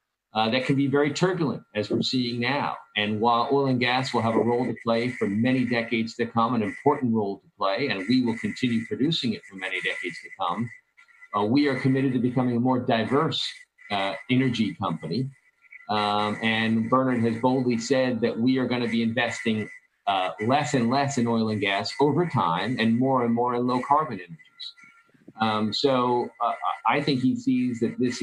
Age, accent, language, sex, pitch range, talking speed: 40-59, American, English, male, 110-130 Hz, 200 wpm